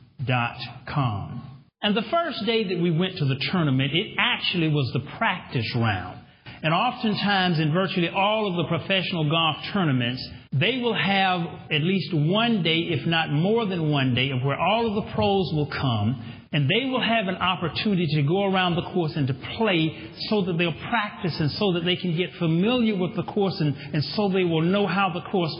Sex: male